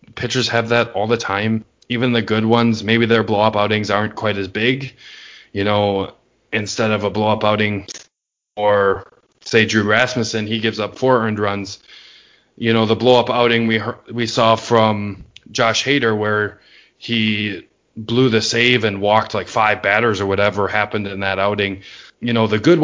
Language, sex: English, male